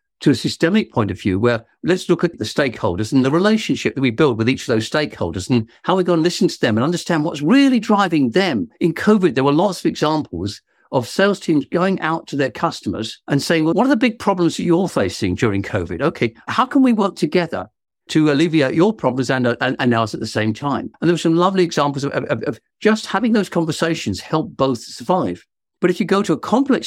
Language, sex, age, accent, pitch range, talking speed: English, male, 50-69, British, 135-195 Hz, 235 wpm